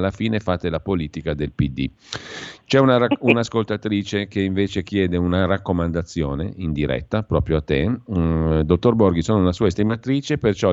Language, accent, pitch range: Italian, native, 85-105 Hz